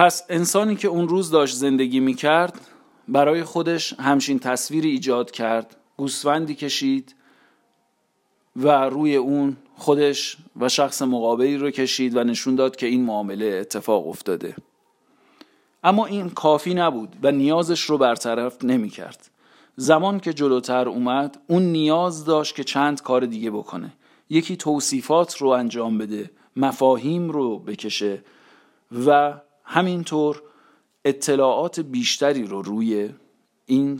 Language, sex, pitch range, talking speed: Persian, male, 125-165 Hz, 120 wpm